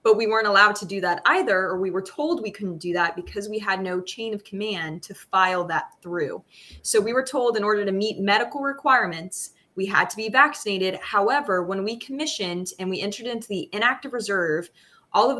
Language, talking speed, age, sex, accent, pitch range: English, 215 wpm, 20-39, female, American, 185-220 Hz